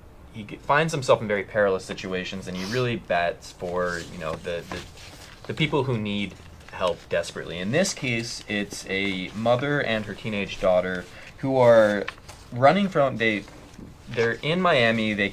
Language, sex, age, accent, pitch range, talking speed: English, male, 20-39, American, 95-115 Hz, 160 wpm